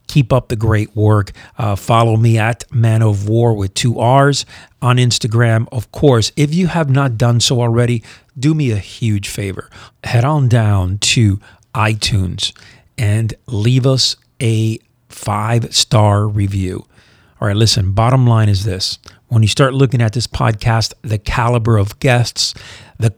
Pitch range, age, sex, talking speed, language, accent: 105-125 Hz, 40-59, male, 160 wpm, English, American